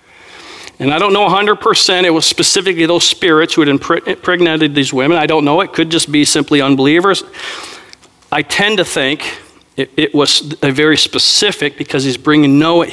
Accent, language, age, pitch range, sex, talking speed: American, English, 40-59, 140-210 Hz, male, 175 wpm